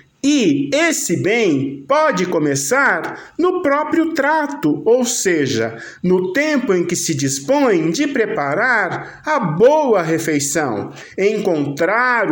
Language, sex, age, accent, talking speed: Portuguese, male, 50-69, Brazilian, 105 wpm